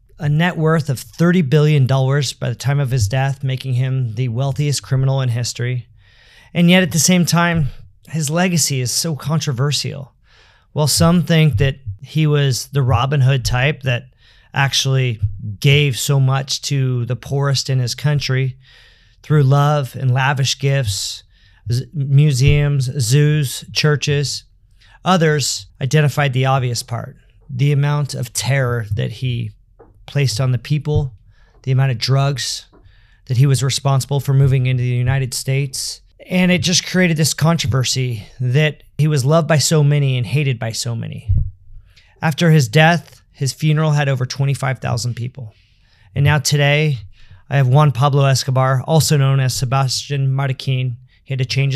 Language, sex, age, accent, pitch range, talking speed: English, male, 40-59, American, 120-145 Hz, 155 wpm